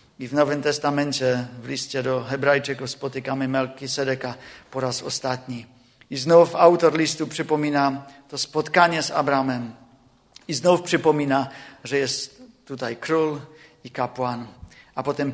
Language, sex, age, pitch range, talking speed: Czech, male, 50-69, 130-160 Hz, 130 wpm